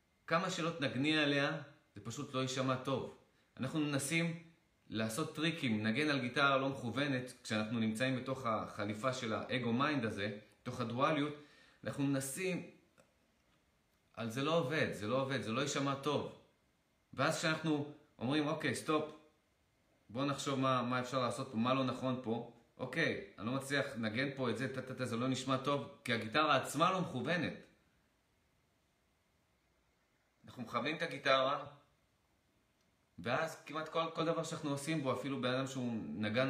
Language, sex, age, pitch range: Hebrew, male, 30-49, 110-145 Hz